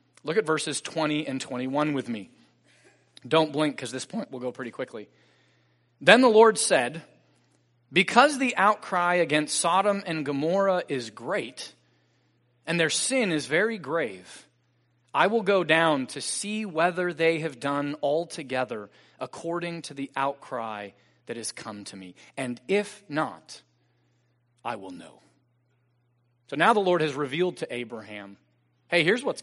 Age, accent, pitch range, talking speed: 30-49, American, 120-180 Hz, 150 wpm